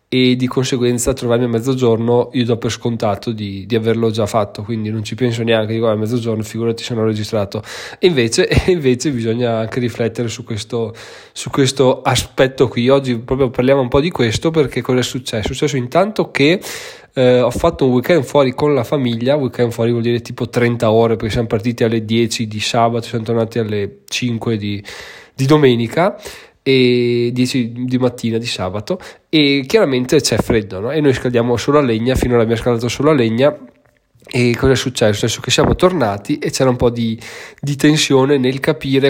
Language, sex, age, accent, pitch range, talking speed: Italian, male, 20-39, native, 115-135 Hz, 195 wpm